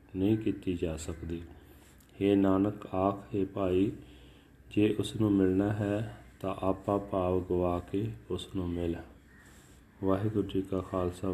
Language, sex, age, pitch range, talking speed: Punjabi, male, 30-49, 90-105 Hz, 130 wpm